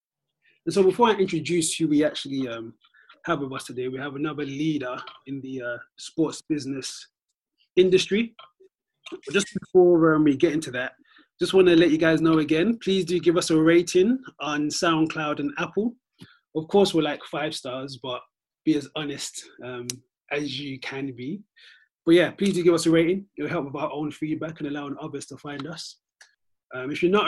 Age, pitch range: 20-39, 145-185 Hz